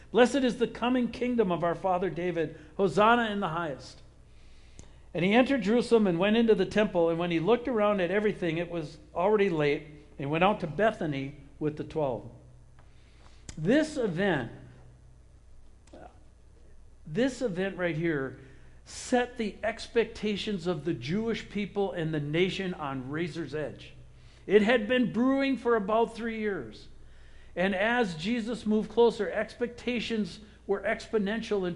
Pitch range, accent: 170-230 Hz, American